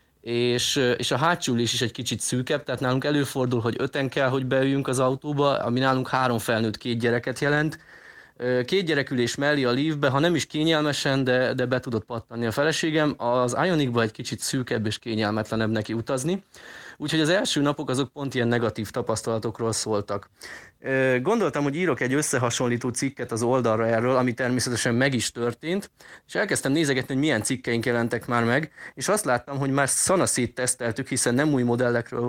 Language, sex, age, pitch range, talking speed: Hungarian, male, 30-49, 120-145 Hz, 175 wpm